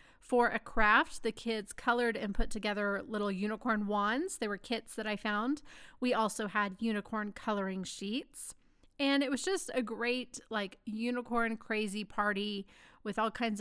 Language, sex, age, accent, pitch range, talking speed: English, female, 40-59, American, 210-255 Hz, 165 wpm